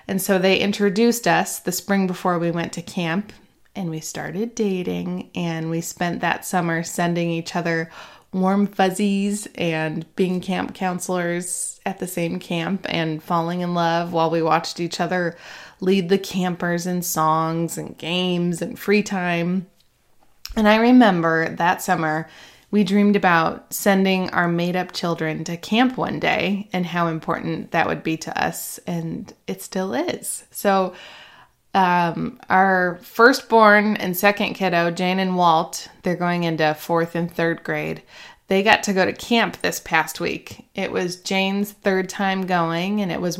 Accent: American